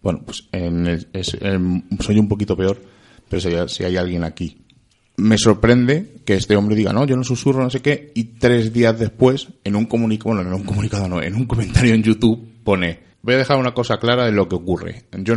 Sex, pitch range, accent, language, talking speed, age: male, 95-115 Hz, Spanish, Spanish, 230 wpm, 30-49